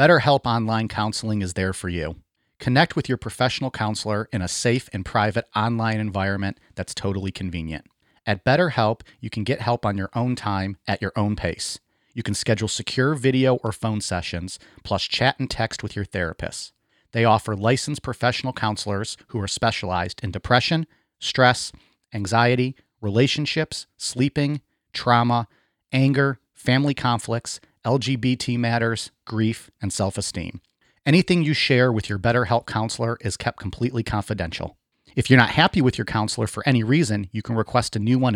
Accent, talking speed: American, 160 wpm